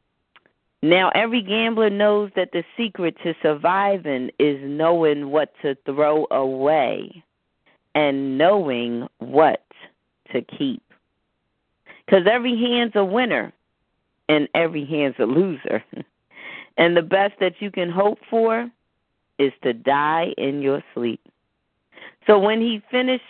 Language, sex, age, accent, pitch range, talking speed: English, female, 40-59, American, 150-205 Hz, 125 wpm